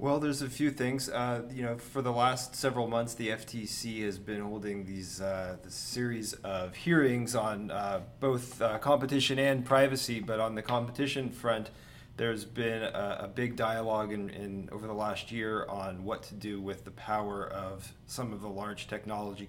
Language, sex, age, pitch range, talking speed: English, male, 30-49, 100-120 Hz, 190 wpm